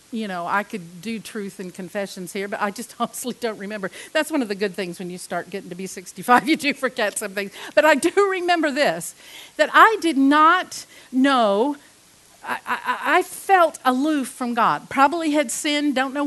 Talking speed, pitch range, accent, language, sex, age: 205 wpm, 225-305 Hz, American, English, female, 50-69